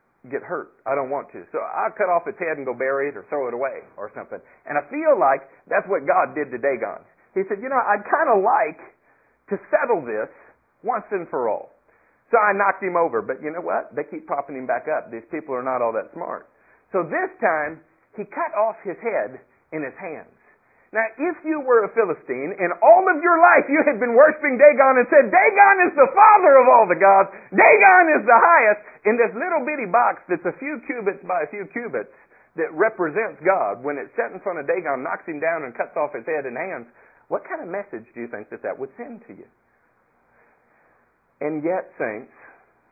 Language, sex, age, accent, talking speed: English, male, 50-69, American, 220 wpm